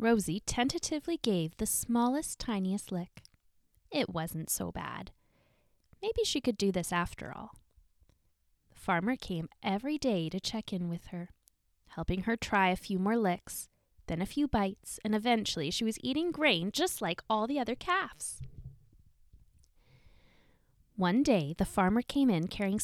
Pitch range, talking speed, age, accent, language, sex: 160-235 Hz, 150 wpm, 10-29, American, English, female